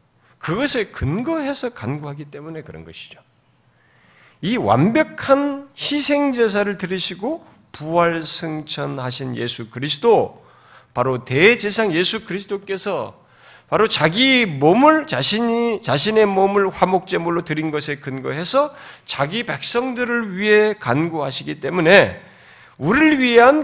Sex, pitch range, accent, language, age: male, 150-240 Hz, native, Korean, 40-59